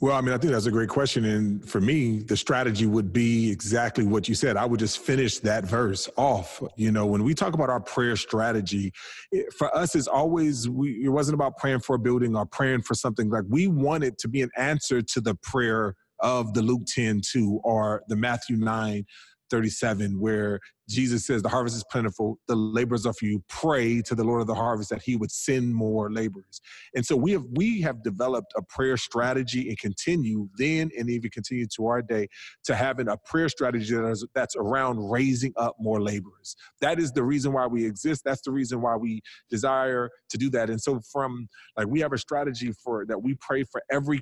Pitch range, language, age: 110-135 Hz, English, 30-49